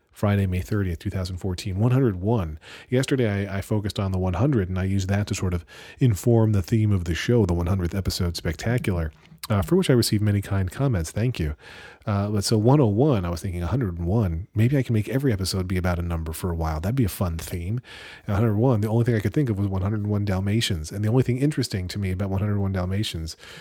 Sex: male